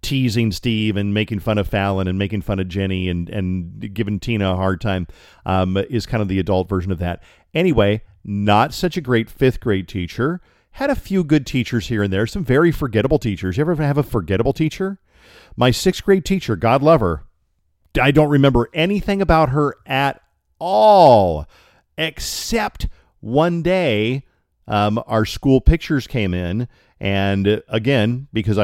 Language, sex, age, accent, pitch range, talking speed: English, male, 40-59, American, 100-135 Hz, 165 wpm